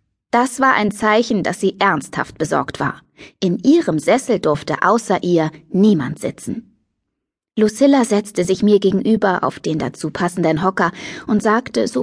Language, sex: German, female